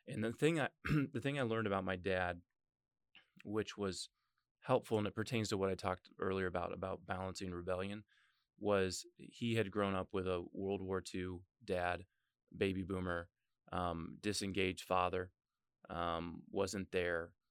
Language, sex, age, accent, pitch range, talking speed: English, male, 20-39, American, 90-100 Hz, 155 wpm